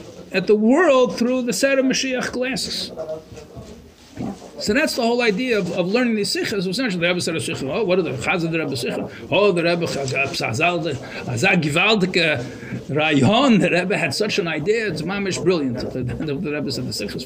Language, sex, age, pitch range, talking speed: English, male, 50-69, 180-260 Hz, 165 wpm